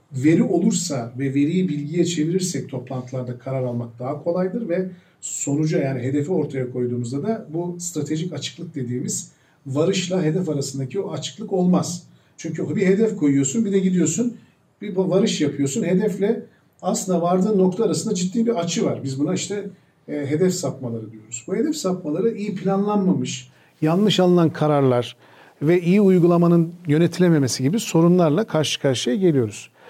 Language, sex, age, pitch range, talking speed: Turkish, male, 50-69, 135-185 Hz, 145 wpm